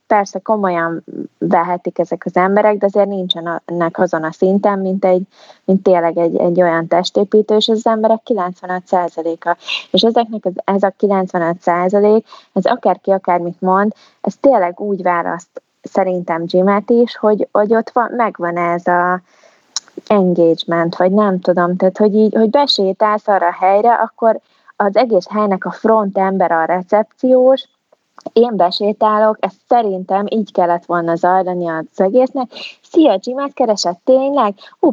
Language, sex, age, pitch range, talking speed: Hungarian, female, 20-39, 180-225 Hz, 145 wpm